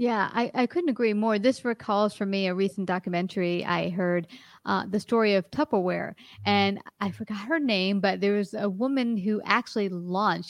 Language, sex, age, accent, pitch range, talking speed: English, female, 30-49, American, 185-215 Hz, 190 wpm